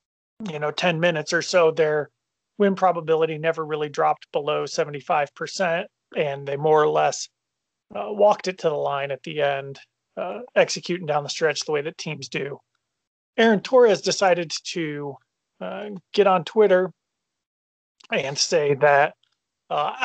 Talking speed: 150 wpm